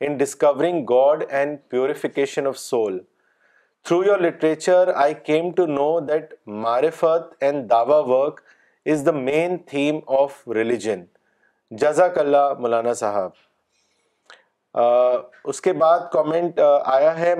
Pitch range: 140-170 Hz